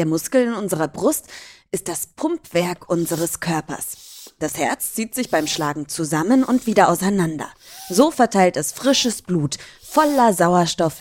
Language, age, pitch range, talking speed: German, 20-39, 155-240 Hz, 145 wpm